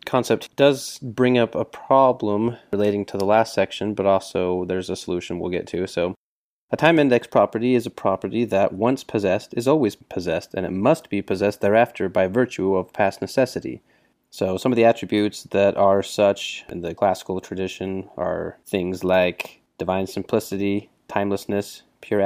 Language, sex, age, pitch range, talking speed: English, male, 30-49, 95-110 Hz, 170 wpm